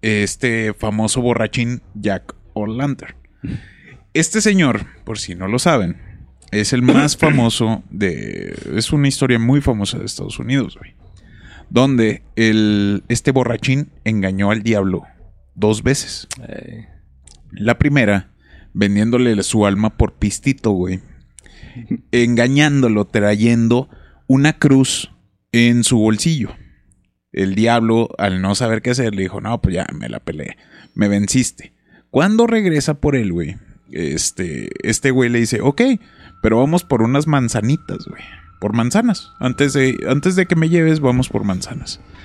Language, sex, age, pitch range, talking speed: Spanish, male, 30-49, 100-135 Hz, 135 wpm